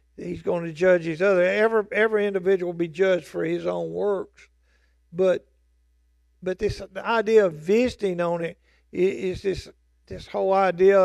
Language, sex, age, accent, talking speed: English, male, 50-69, American, 165 wpm